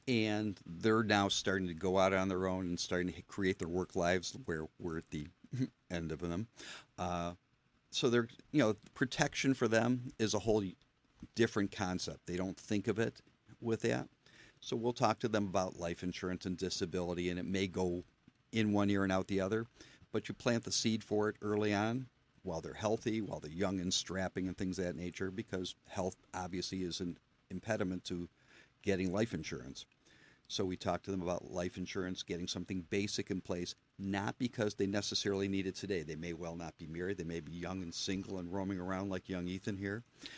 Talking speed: 200 wpm